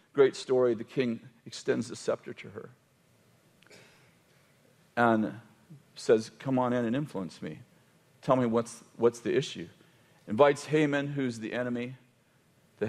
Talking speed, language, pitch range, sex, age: 135 wpm, English, 115-140 Hz, male, 50-69